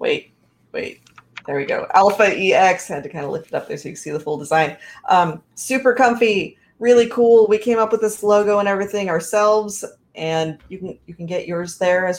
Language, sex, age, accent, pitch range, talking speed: English, female, 30-49, American, 160-200 Hz, 225 wpm